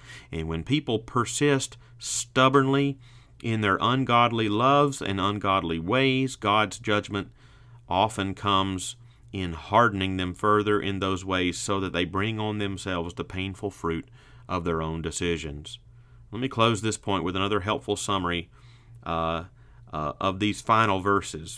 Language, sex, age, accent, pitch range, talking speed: English, male, 30-49, American, 95-125 Hz, 140 wpm